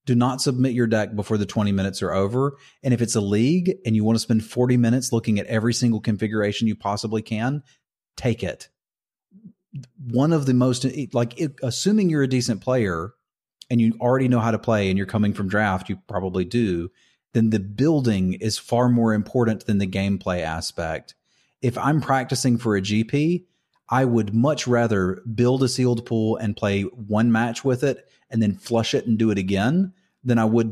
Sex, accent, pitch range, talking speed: male, American, 100-125 Hz, 195 wpm